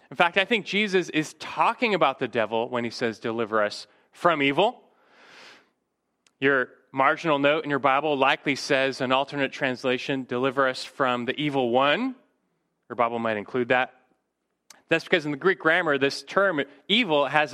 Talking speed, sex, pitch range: 170 wpm, male, 130-175 Hz